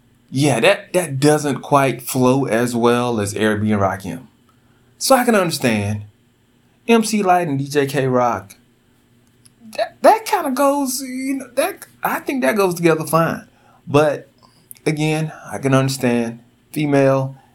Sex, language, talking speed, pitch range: male, English, 140 wpm, 115-135 Hz